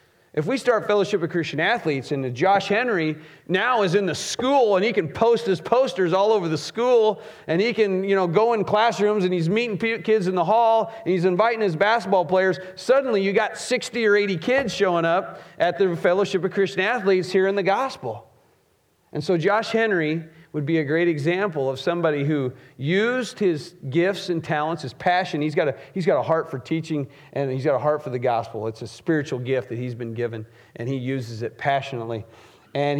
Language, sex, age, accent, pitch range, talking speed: English, male, 40-59, American, 135-190 Hz, 210 wpm